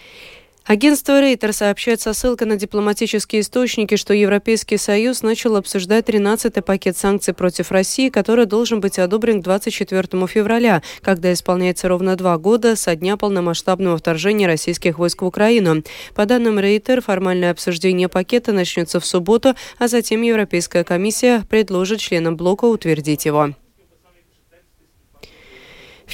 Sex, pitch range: female, 185-230 Hz